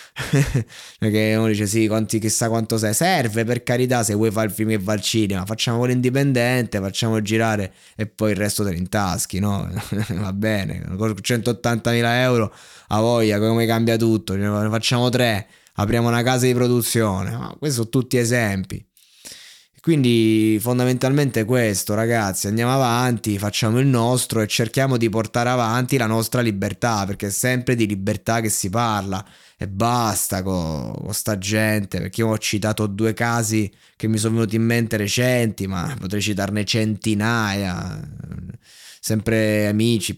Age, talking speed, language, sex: 20-39, 155 wpm, Italian, male